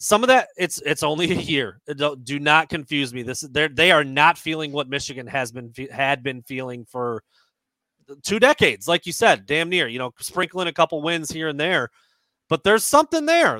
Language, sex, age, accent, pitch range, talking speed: English, male, 30-49, American, 135-170 Hz, 205 wpm